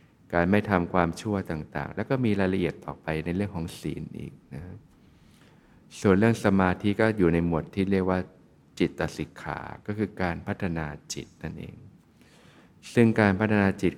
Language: Thai